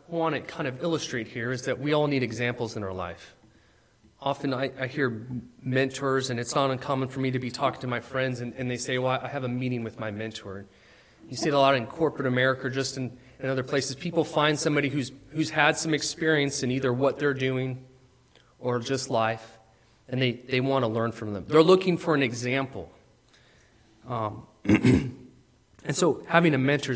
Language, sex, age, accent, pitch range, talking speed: English, male, 30-49, American, 115-145 Hz, 205 wpm